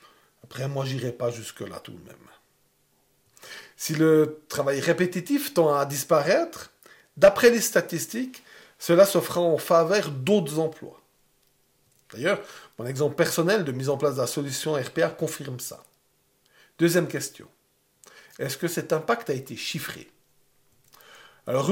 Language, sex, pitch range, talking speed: French, male, 150-200 Hz, 135 wpm